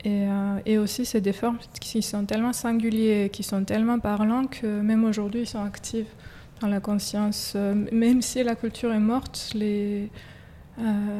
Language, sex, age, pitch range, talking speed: French, female, 20-39, 210-235 Hz, 170 wpm